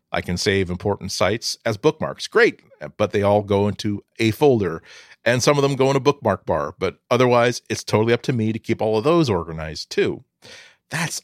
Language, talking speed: English, 210 wpm